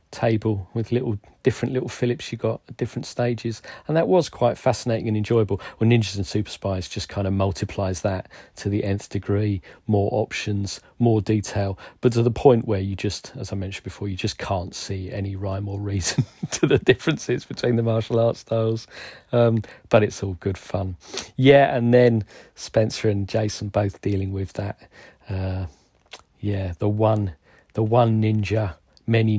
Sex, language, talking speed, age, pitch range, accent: male, English, 180 wpm, 40-59, 95-115 Hz, British